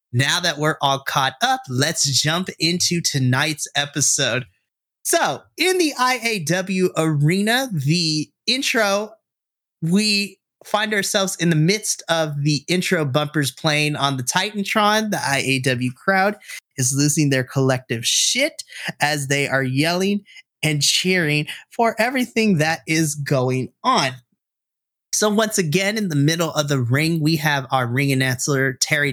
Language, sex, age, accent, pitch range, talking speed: English, male, 30-49, American, 140-190 Hz, 140 wpm